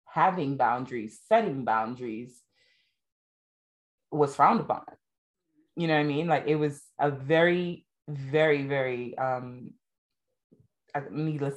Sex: female